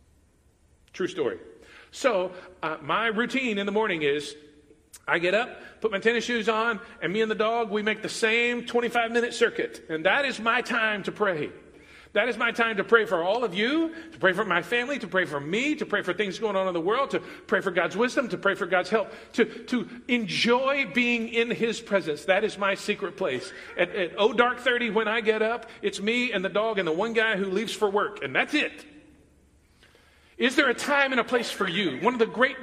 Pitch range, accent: 195-245 Hz, American